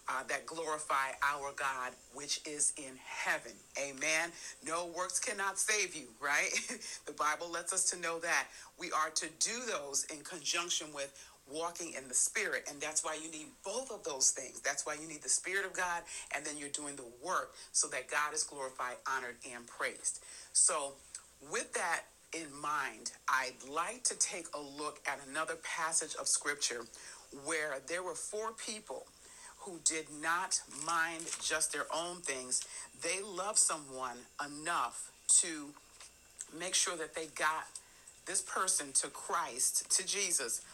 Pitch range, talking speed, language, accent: 135-170 Hz, 165 wpm, English, American